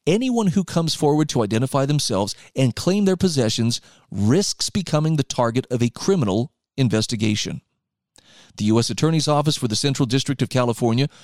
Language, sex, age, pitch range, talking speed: English, male, 40-59, 115-155 Hz, 155 wpm